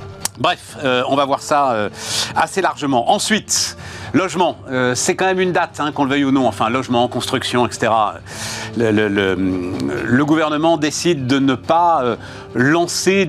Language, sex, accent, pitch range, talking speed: French, male, French, 110-150 Hz, 165 wpm